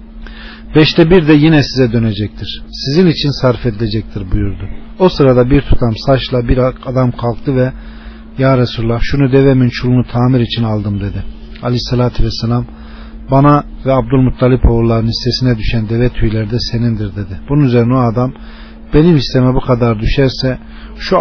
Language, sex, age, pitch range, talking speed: Turkish, male, 40-59, 110-145 Hz, 145 wpm